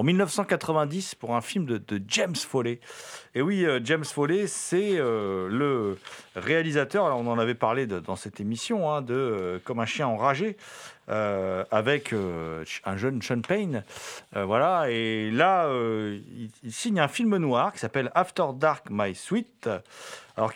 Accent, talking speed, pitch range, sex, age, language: French, 170 wpm, 110-155 Hz, male, 40-59, French